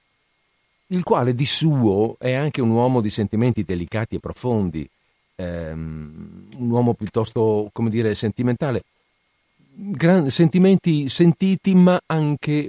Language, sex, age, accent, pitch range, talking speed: Italian, male, 50-69, native, 95-130 Hz, 120 wpm